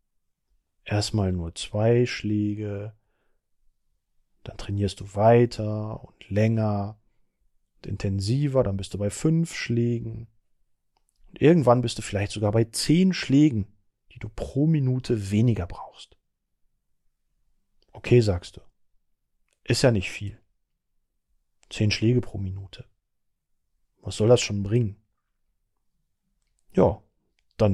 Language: German